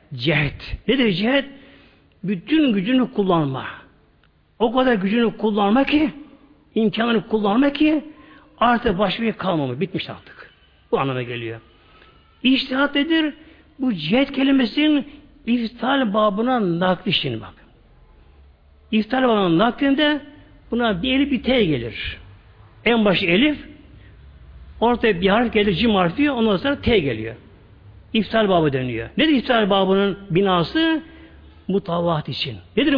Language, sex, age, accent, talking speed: Turkish, male, 60-79, native, 115 wpm